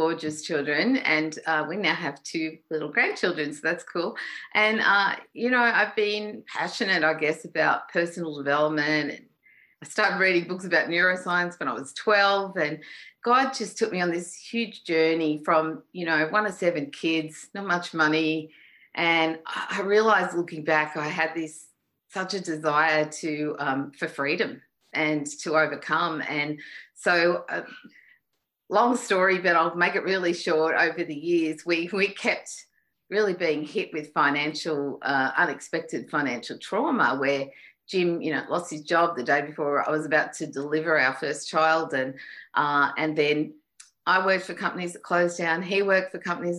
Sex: female